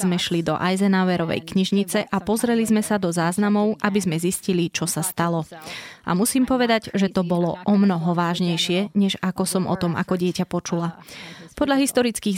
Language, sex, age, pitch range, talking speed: Slovak, female, 20-39, 175-210 Hz, 175 wpm